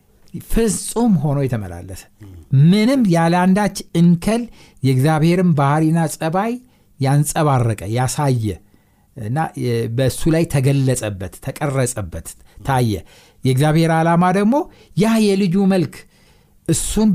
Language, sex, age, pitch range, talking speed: Amharic, male, 60-79, 115-170 Hz, 80 wpm